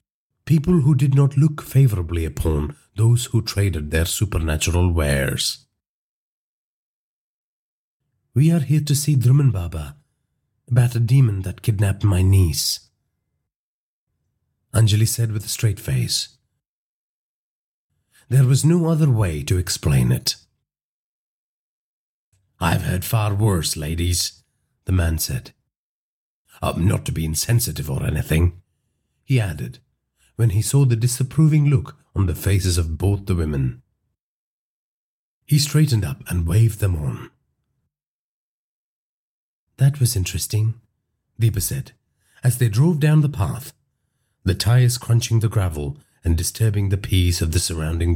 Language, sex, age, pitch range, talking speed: English, male, 40-59, 85-130 Hz, 125 wpm